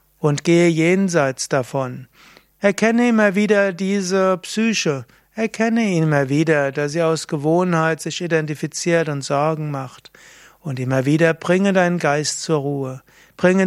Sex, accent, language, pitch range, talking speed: male, German, German, 145-195 Hz, 135 wpm